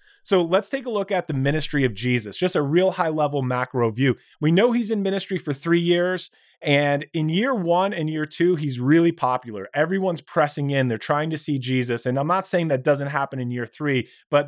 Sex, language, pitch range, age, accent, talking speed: male, English, 130-175 Hz, 30-49, American, 220 wpm